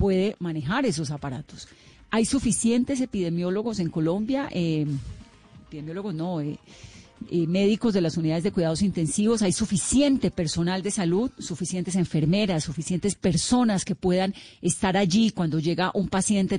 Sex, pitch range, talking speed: female, 165-210 Hz, 135 wpm